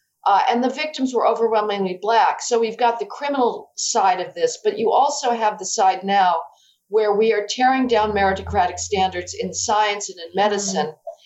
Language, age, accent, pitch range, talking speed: English, 50-69, American, 195-240 Hz, 180 wpm